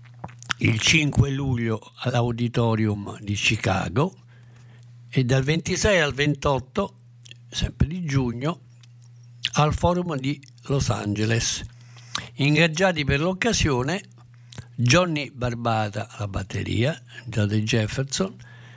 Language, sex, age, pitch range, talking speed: Italian, male, 60-79, 120-140 Hz, 90 wpm